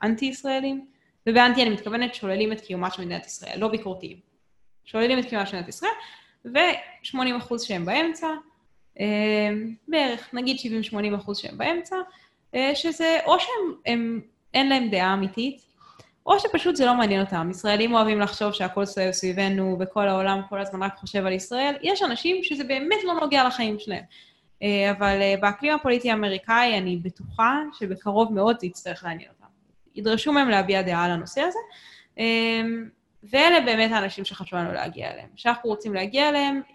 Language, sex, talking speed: Hebrew, female, 145 wpm